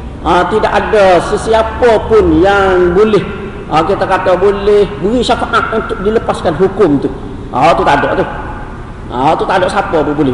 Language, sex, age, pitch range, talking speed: Malay, male, 40-59, 145-205 Hz, 175 wpm